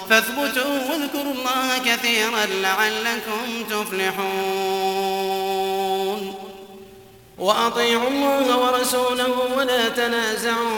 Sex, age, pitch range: male, 30-49, 215-250 Hz